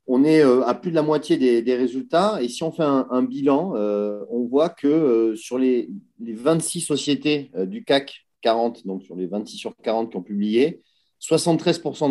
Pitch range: 115-150 Hz